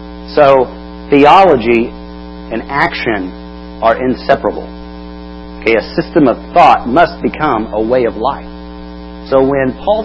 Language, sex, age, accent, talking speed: English, male, 40-59, American, 120 wpm